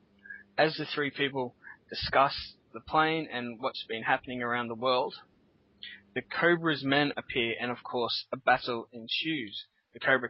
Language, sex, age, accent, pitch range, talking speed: English, male, 20-39, Australian, 120-145 Hz, 150 wpm